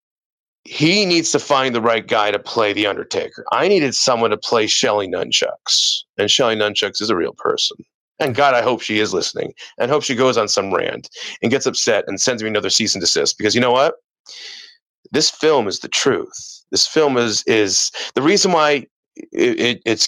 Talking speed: 195 wpm